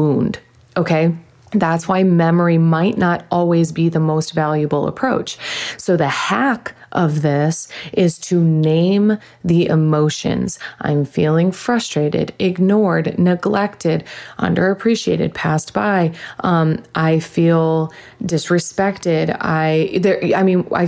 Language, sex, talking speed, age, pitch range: English, female, 115 wpm, 20-39, 160-185 Hz